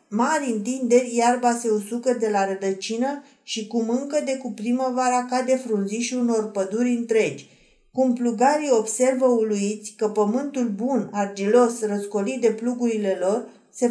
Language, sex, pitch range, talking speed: Romanian, female, 215-255 Hz, 140 wpm